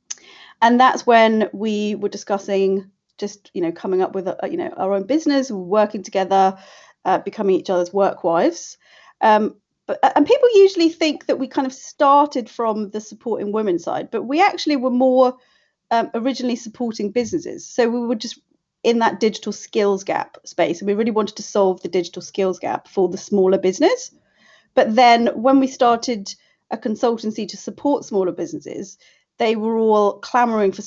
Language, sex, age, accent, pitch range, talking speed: English, female, 30-49, British, 195-245 Hz, 175 wpm